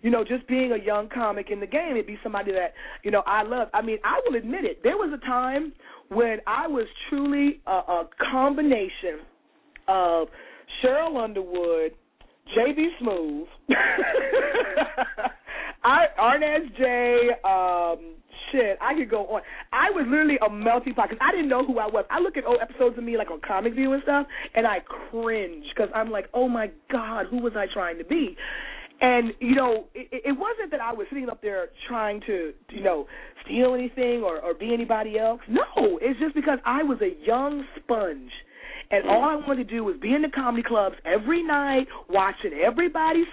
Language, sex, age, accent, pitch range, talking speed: English, female, 30-49, American, 215-285 Hz, 185 wpm